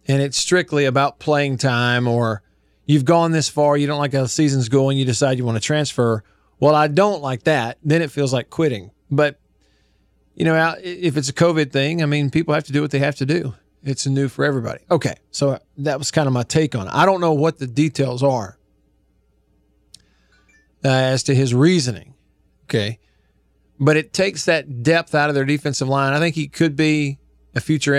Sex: male